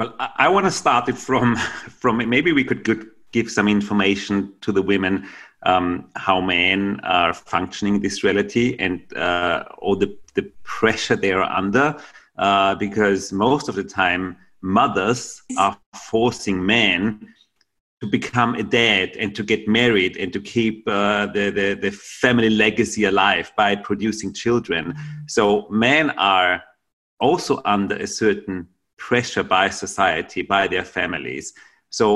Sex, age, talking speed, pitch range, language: male, 40-59, 145 wpm, 95-115 Hz, English